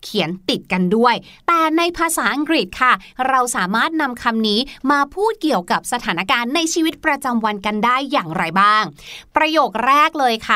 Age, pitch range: 30-49, 230-320 Hz